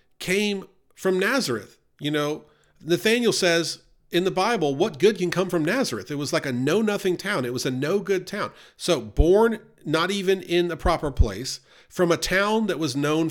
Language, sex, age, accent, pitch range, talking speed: English, male, 40-59, American, 135-185 Hz, 185 wpm